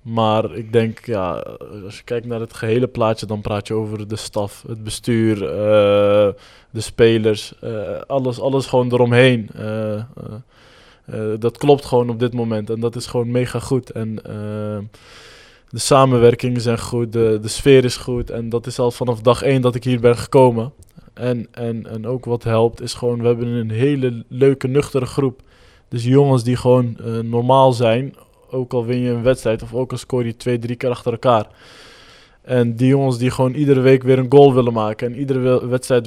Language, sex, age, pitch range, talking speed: Dutch, male, 20-39, 110-125 Hz, 190 wpm